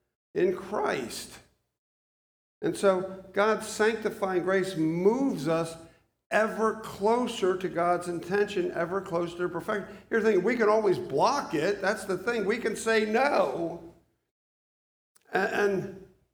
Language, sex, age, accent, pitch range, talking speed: English, male, 50-69, American, 165-220 Hz, 125 wpm